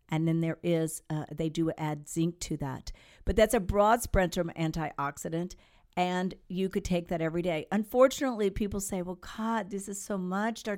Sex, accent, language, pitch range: female, American, English, 170-225 Hz